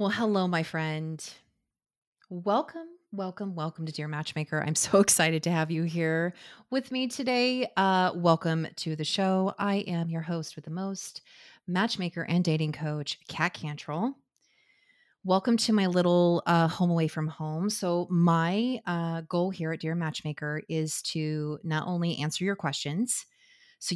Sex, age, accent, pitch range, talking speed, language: female, 30-49, American, 155-195 Hz, 160 wpm, English